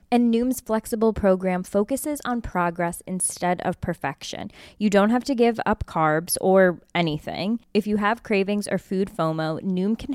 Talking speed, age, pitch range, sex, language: 165 wpm, 20-39, 175-225 Hz, female, English